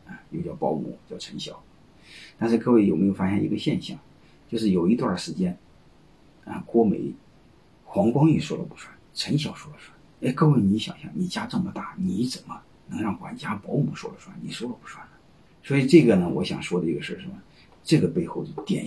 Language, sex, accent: Chinese, male, native